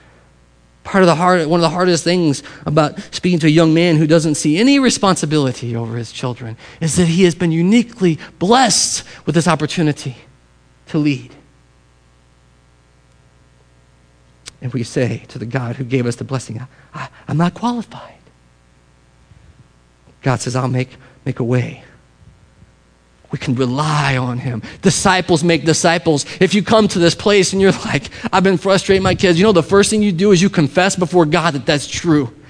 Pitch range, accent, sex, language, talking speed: 130-200 Hz, American, male, English, 175 wpm